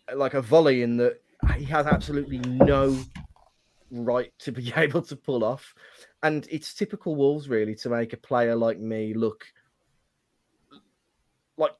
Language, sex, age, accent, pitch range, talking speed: English, male, 20-39, British, 115-145 Hz, 145 wpm